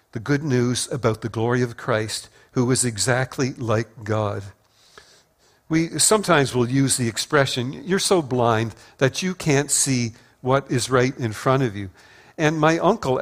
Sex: male